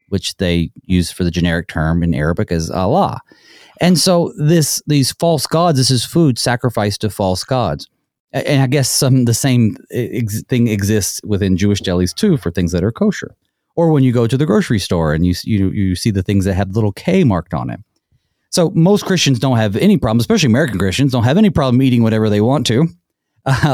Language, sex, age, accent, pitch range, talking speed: English, male, 30-49, American, 100-140 Hz, 210 wpm